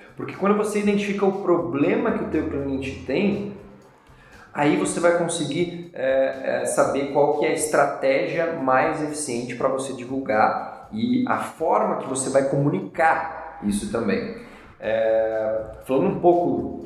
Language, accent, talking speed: Portuguese, Brazilian, 135 wpm